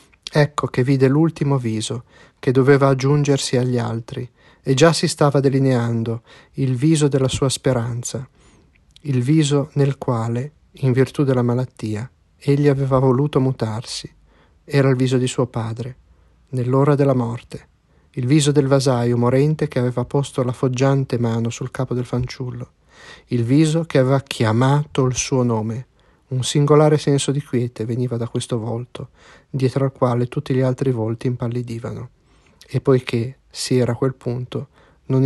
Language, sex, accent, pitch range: Italian, male, native, 120-140 Hz